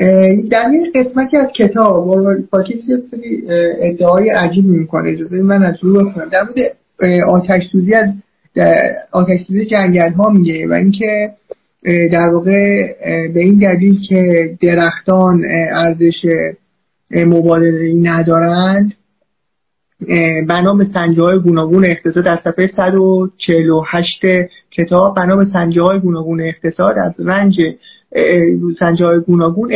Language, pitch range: Persian, 175-210 Hz